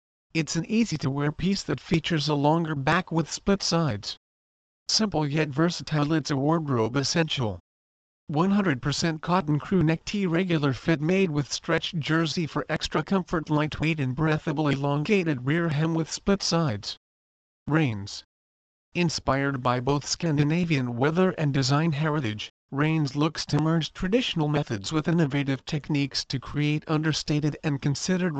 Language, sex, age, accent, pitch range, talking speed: English, male, 50-69, American, 135-165 Hz, 135 wpm